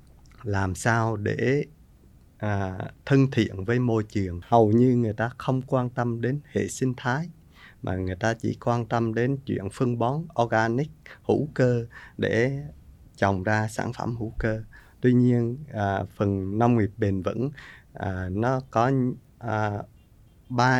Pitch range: 100-130 Hz